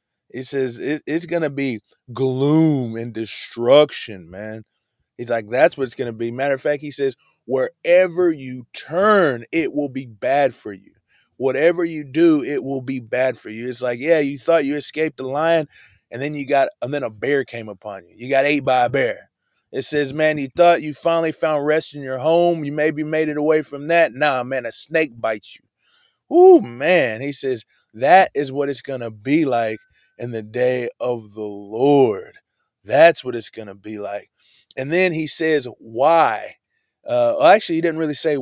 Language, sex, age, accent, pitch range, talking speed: English, male, 20-39, American, 120-155 Hz, 205 wpm